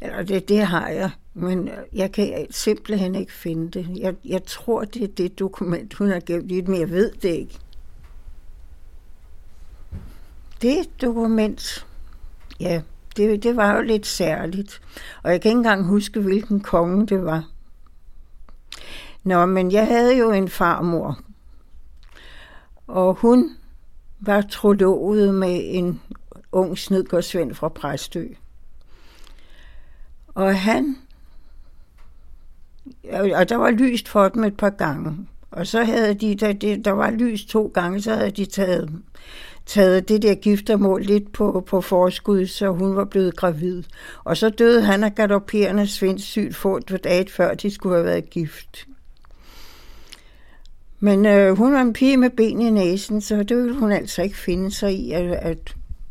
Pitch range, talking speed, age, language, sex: 155-210 Hz, 150 wpm, 60-79, Danish, female